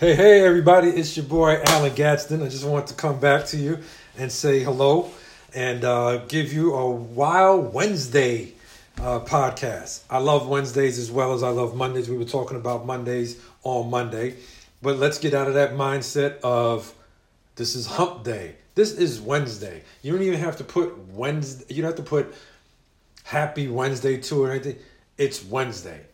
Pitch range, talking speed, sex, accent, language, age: 120-145 Hz, 180 wpm, male, American, English, 50-69